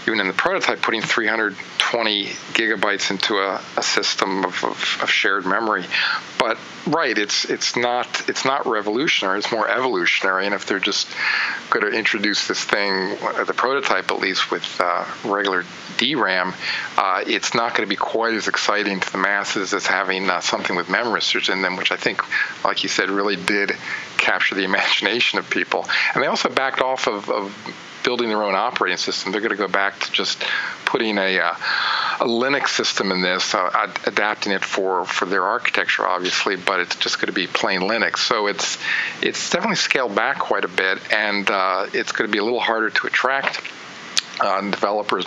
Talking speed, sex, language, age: 190 wpm, male, English, 40-59